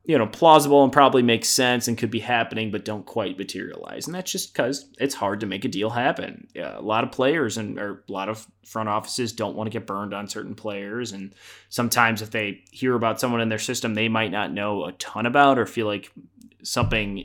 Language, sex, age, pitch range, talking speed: English, male, 20-39, 100-125 Hz, 225 wpm